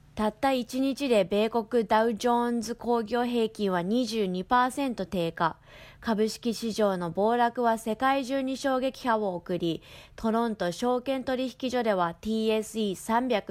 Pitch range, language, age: 185-250 Hz, English, 20-39